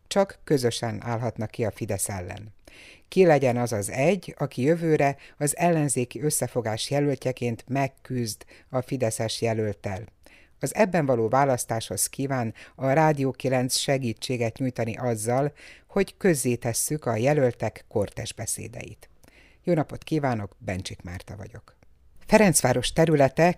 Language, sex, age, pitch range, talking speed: Hungarian, female, 60-79, 115-145 Hz, 120 wpm